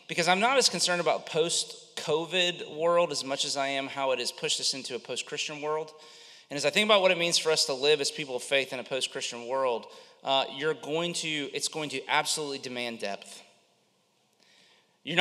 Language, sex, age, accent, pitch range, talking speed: English, male, 30-49, American, 130-175 Hz, 210 wpm